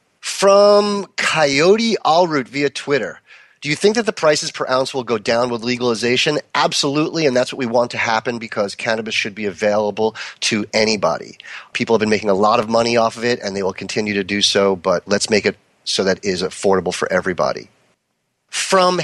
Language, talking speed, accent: English, 195 wpm, American